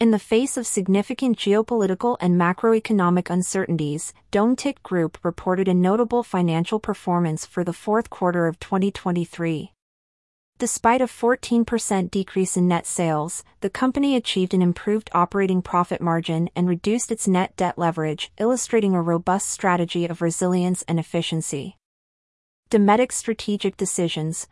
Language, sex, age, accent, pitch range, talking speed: English, female, 30-49, American, 170-210 Hz, 130 wpm